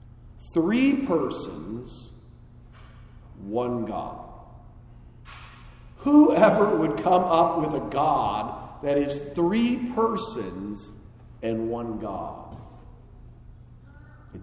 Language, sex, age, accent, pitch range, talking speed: English, male, 40-59, American, 115-160 Hz, 80 wpm